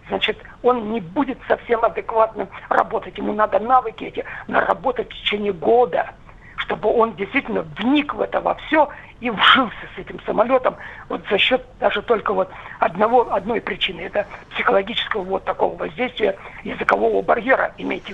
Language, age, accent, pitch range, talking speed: Russian, 50-69, native, 210-270 Hz, 140 wpm